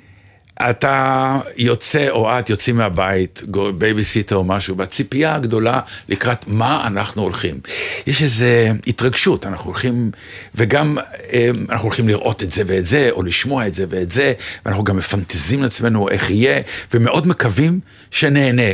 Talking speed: 140 wpm